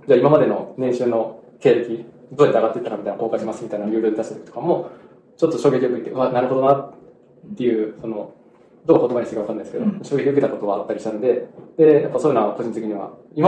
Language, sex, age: Japanese, male, 20-39